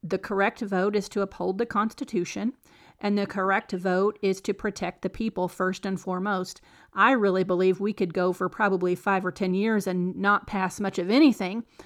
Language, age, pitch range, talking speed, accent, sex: English, 40-59, 190-220 Hz, 190 wpm, American, female